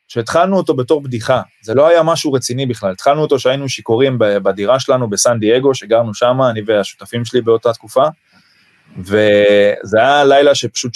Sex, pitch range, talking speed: male, 120-150 Hz, 160 wpm